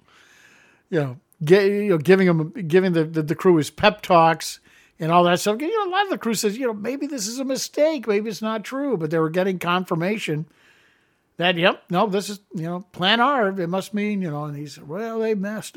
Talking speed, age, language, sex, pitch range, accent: 230 wpm, 60-79, English, male, 160-205 Hz, American